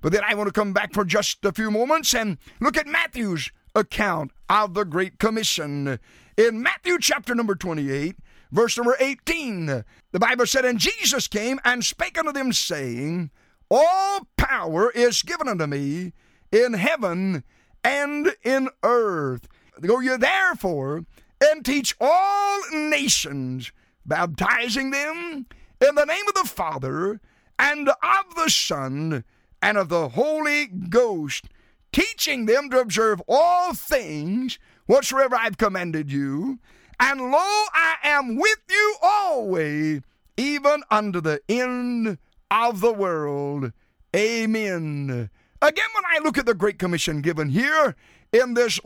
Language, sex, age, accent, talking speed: English, male, 50-69, American, 140 wpm